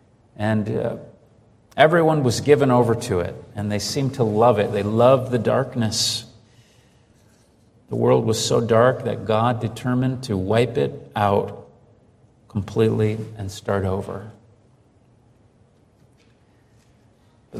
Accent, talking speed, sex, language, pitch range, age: American, 120 wpm, male, English, 110-120 Hz, 50-69